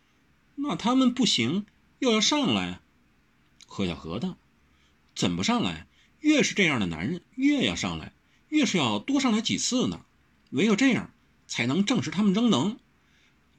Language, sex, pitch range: Chinese, male, 165-250 Hz